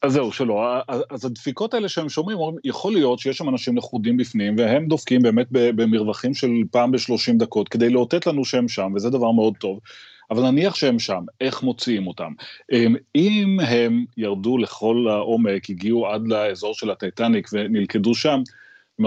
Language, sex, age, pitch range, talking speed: Hebrew, male, 30-49, 110-130 Hz, 165 wpm